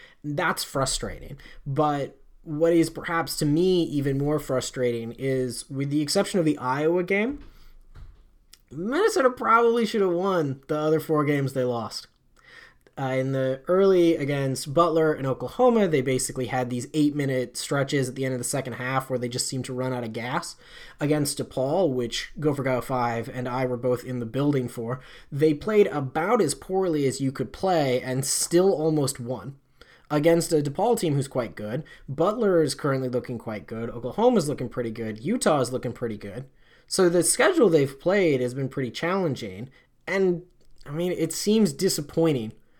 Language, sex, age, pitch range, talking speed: English, male, 20-39, 125-165 Hz, 170 wpm